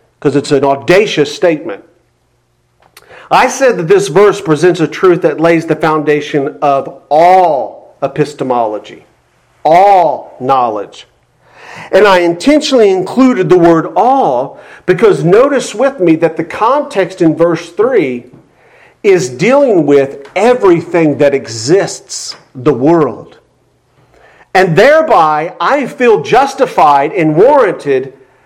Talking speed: 115 wpm